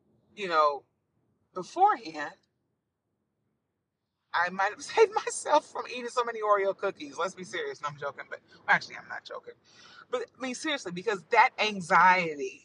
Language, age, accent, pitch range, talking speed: English, 30-49, American, 160-230 Hz, 145 wpm